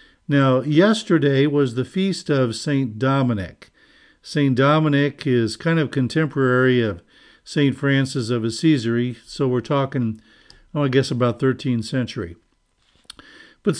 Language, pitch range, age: English, 125-155 Hz, 50-69